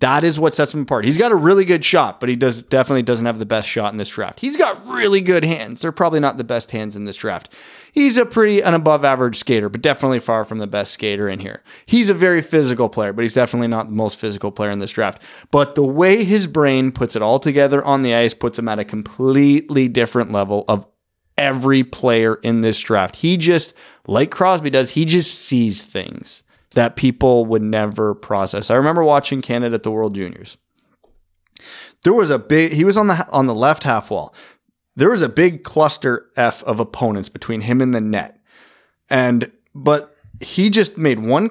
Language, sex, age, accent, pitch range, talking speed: English, male, 20-39, American, 115-160 Hz, 215 wpm